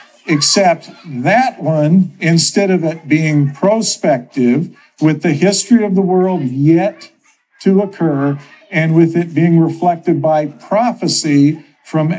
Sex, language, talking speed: male, English, 125 wpm